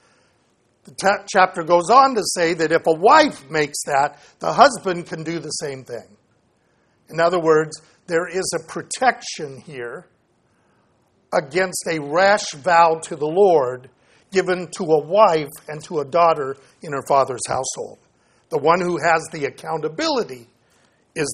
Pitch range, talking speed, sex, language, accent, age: 150-195 Hz, 150 wpm, male, English, American, 50-69